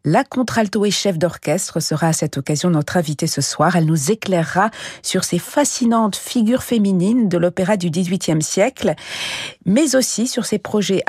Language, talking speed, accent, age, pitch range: French, 170 wpm, French, 40-59, 165-220 Hz